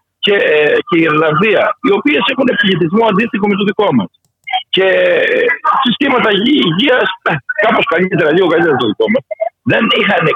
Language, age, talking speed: Greek, 60-79, 140 wpm